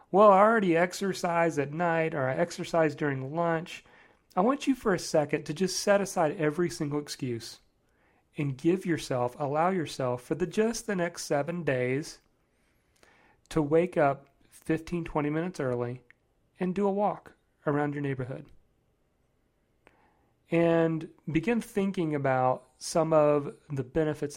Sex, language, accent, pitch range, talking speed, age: male, English, American, 135-180 Hz, 145 wpm, 40-59